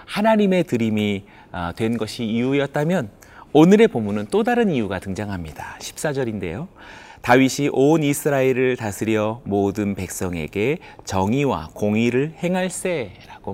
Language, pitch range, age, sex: Korean, 100-160 Hz, 30-49, male